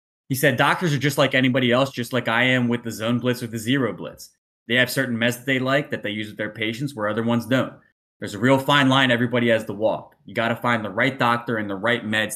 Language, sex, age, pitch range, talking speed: English, male, 20-39, 110-130 Hz, 275 wpm